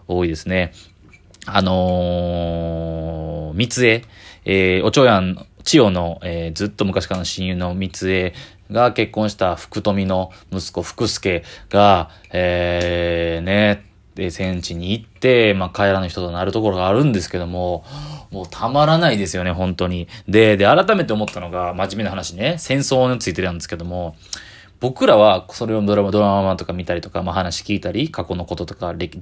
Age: 20-39